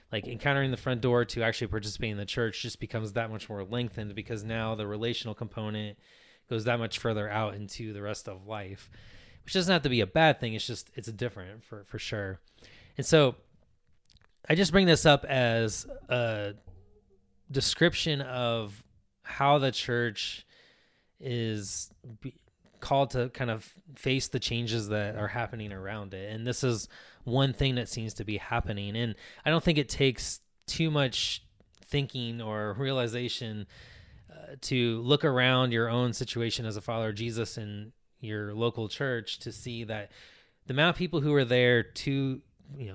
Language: English